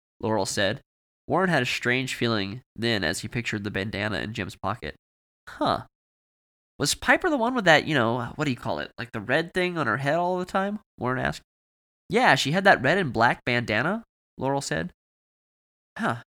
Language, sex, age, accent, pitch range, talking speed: English, male, 20-39, American, 95-125 Hz, 195 wpm